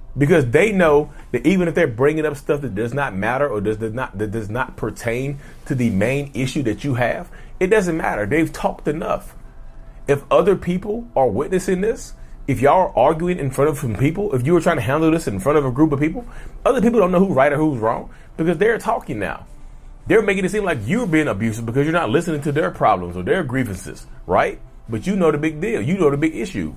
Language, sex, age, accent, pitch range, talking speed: English, male, 30-49, American, 125-170 Hz, 240 wpm